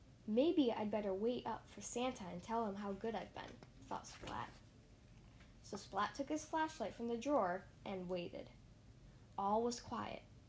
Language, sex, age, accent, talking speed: English, female, 10-29, American, 165 wpm